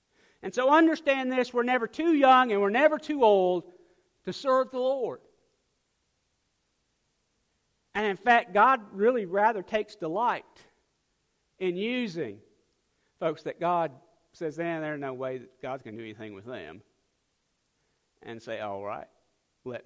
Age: 50-69